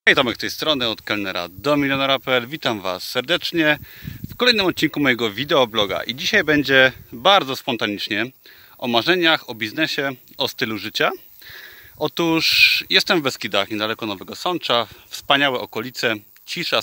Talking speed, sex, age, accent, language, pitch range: 140 wpm, male, 30-49, native, Polish, 110-150 Hz